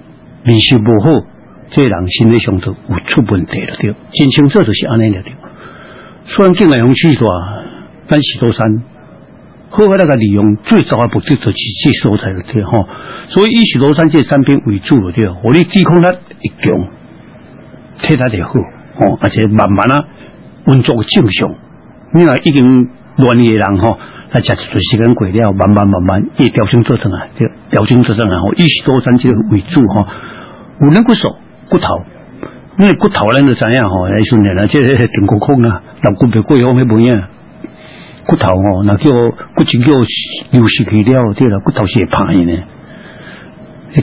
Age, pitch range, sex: 60-79, 105-140 Hz, male